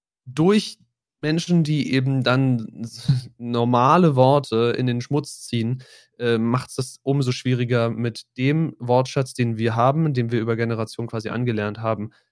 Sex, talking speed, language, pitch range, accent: male, 140 wpm, German, 115-135 Hz, German